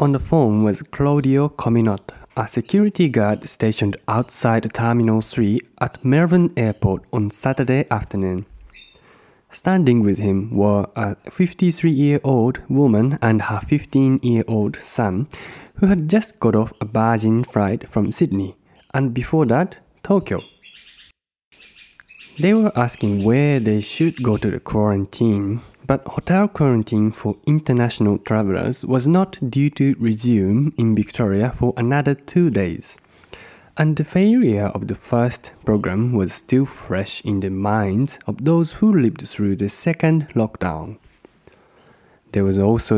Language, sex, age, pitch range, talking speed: English, male, 20-39, 105-140 Hz, 135 wpm